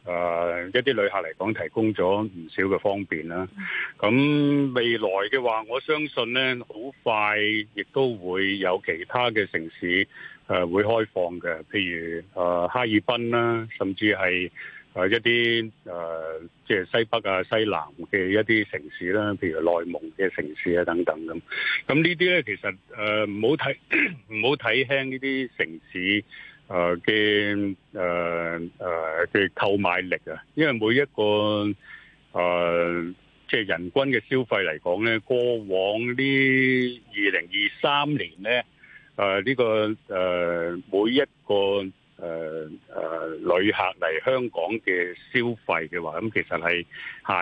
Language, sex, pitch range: Chinese, male, 90-120 Hz